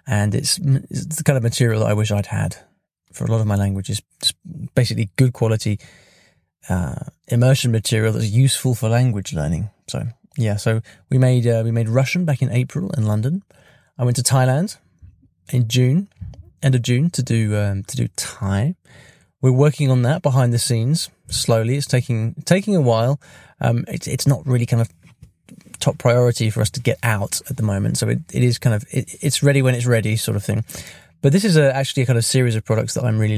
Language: English